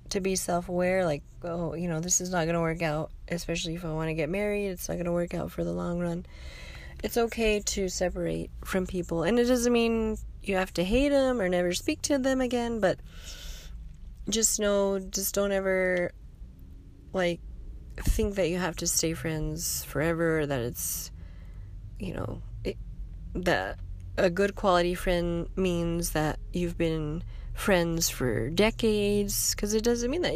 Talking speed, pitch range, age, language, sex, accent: 170 wpm, 155-200 Hz, 20-39, English, female, American